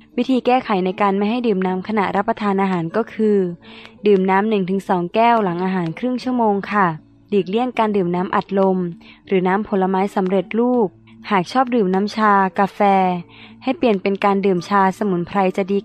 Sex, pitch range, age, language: female, 190-235 Hz, 20-39, Thai